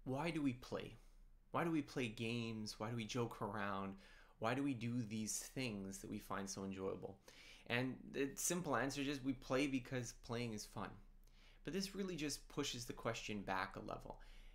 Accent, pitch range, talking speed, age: American, 105-130 Hz, 190 wpm, 20-39